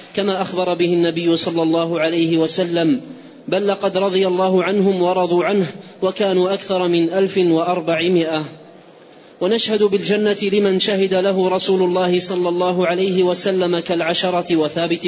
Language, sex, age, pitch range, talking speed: Arabic, male, 30-49, 170-190 Hz, 130 wpm